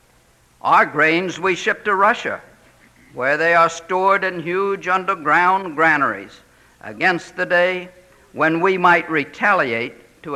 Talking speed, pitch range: 125 wpm, 160-200 Hz